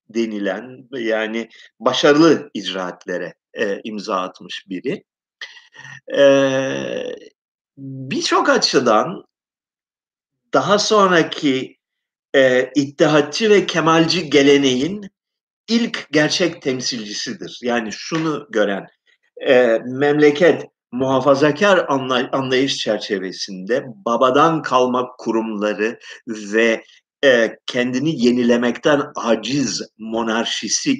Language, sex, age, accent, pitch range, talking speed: Turkish, male, 50-69, native, 120-160 Hz, 75 wpm